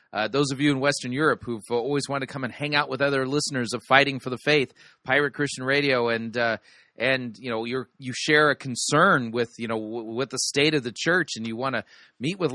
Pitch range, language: 125-165 Hz, English